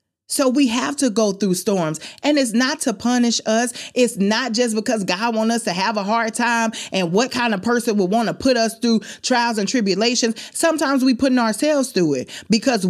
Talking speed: 215 wpm